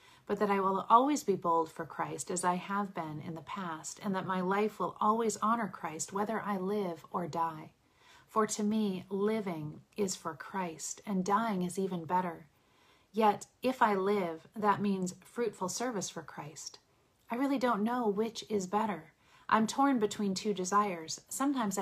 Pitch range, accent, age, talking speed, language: 170-210 Hz, American, 30-49, 175 wpm, English